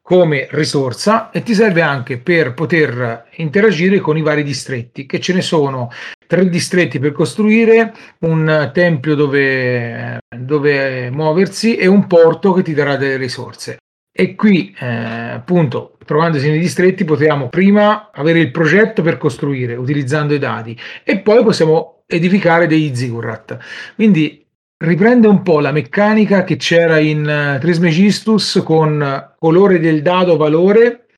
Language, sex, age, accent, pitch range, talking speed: Italian, male, 40-59, native, 145-180 Hz, 140 wpm